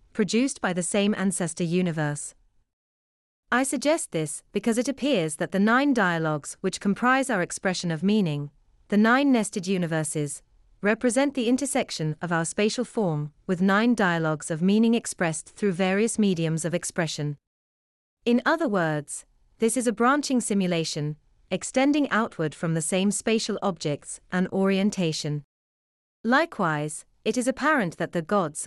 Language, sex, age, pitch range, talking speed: English, female, 30-49, 160-230 Hz, 140 wpm